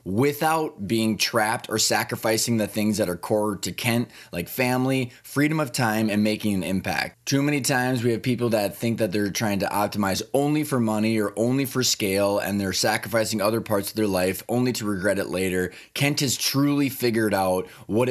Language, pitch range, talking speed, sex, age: English, 105-130 Hz, 200 wpm, male, 20-39